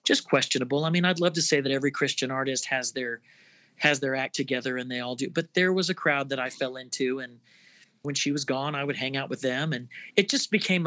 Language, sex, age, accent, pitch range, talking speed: English, male, 40-59, American, 130-150 Hz, 255 wpm